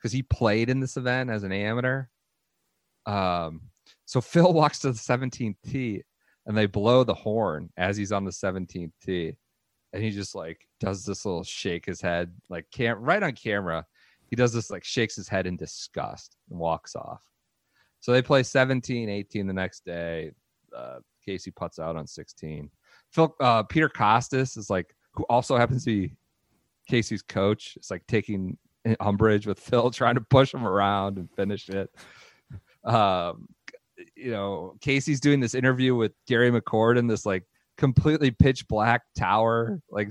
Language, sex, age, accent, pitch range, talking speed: English, male, 30-49, American, 95-130 Hz, 170 wpm